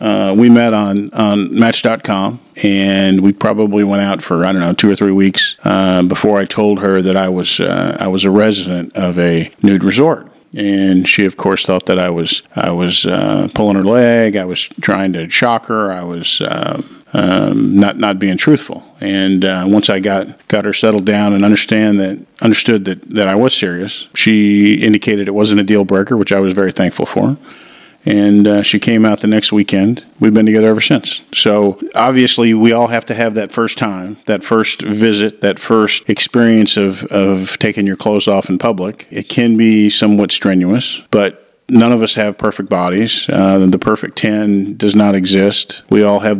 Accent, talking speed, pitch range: American, 205 wpm, 95-110 Hz